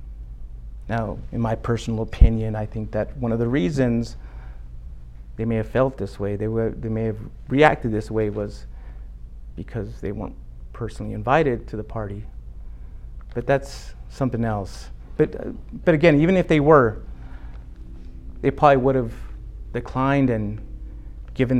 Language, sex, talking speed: English, male, 150 wpm